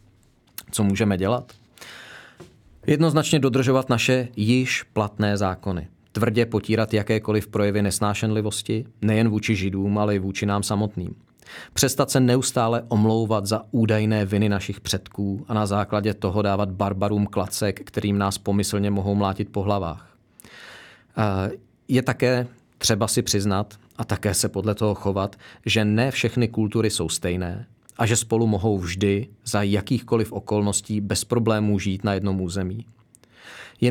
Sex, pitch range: male, 100-115 Hz